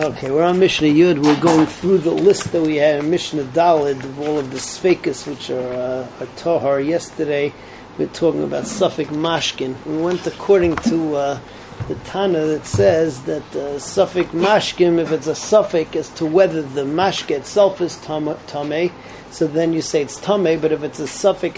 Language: English